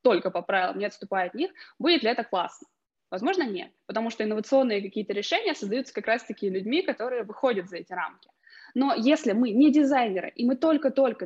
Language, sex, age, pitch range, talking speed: Russian, female, 20-39, 210-270 Hz, 185 wpm